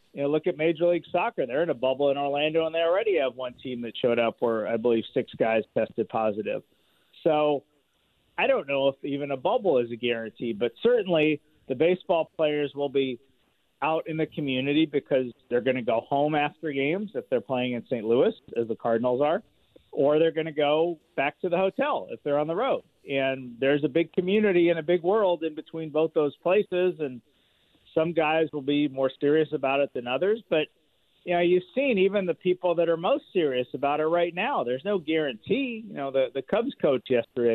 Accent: American